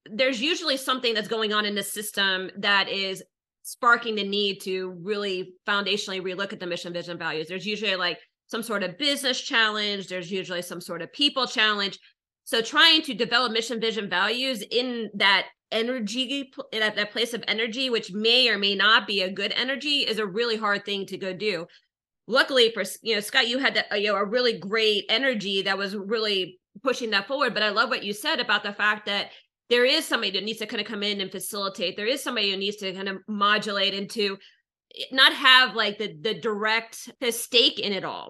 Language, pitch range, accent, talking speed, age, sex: English, 200-240 Hz, American, 210 wpm, 30-49, female